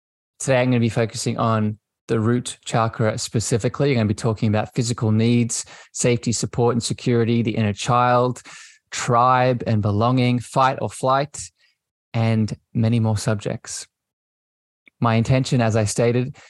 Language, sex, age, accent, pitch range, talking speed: English, male, 20-39, Australian, 110-125 Hz, 150 wpm